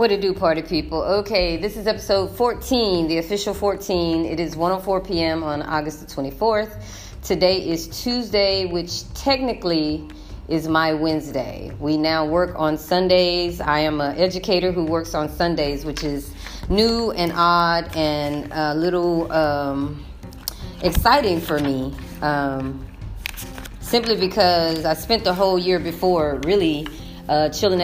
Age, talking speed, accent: 30-49, 140 wpm, American